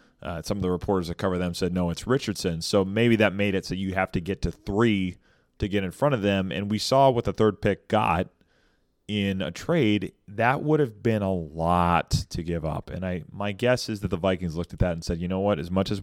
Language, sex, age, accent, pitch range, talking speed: English, male, 30-49, American, 90-110 Hz, 260 wpm